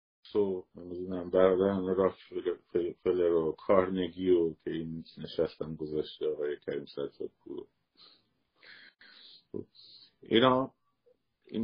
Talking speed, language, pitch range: 95 wpm, Persian, 85-125 Hz